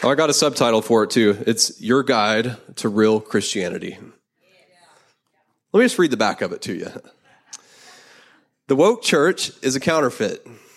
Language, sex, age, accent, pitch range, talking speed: English, male, 20-39, American, 110-130 Hz, 165 wpm